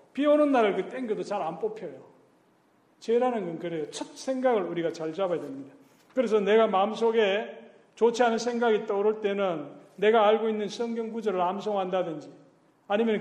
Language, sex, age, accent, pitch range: Korean, male, 40-59, native, 180-235 Hz